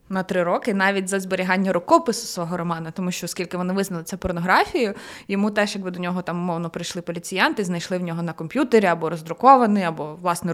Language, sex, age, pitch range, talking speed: Ukrainian, female, 20-39, 175-220 Hz, 195 wpm